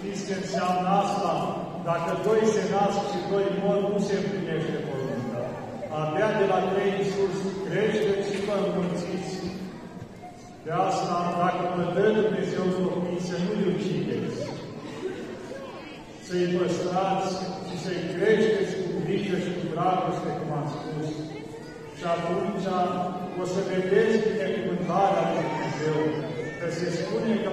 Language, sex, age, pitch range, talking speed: Romanian, male, 40-59, 160-195 Hz, 135 wpm